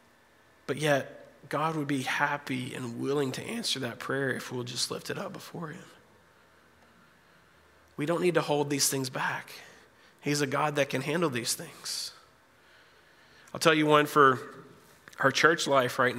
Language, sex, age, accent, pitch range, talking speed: English, male, 30-49, American, 120-140 Hz, 165 wpm